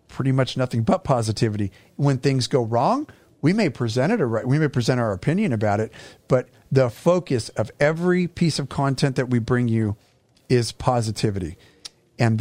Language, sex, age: English, male, 40-59